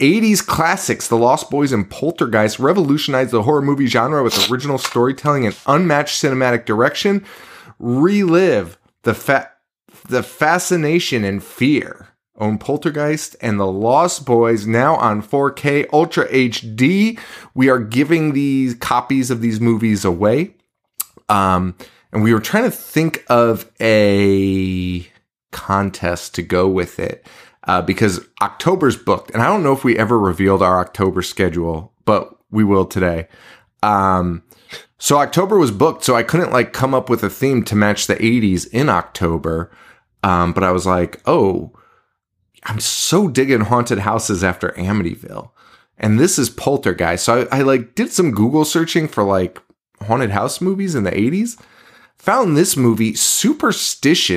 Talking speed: 150 wpm